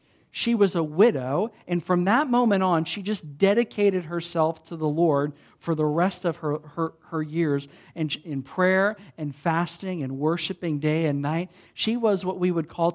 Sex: male